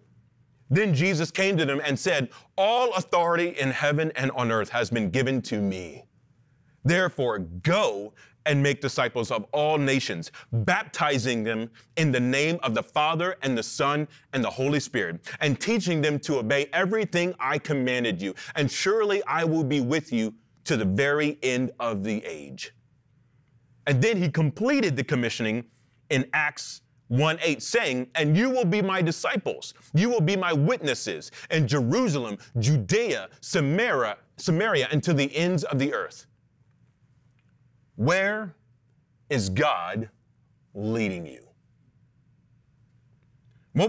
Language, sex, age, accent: English, male, 30-49, American